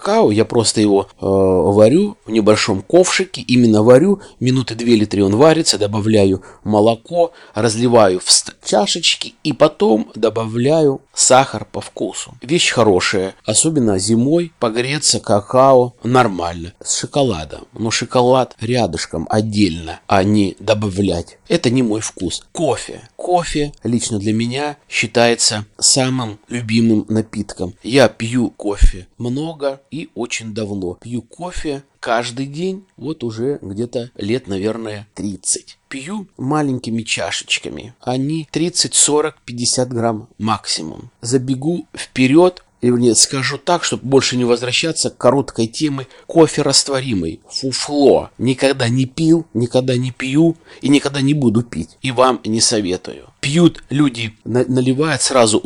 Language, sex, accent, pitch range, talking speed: Russian, male, native, 110-145 Hz, 125 wpm